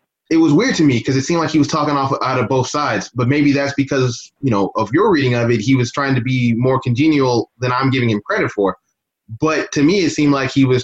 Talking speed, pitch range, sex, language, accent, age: 270 wpm, 120-140 Hz, male, English, American, 20-39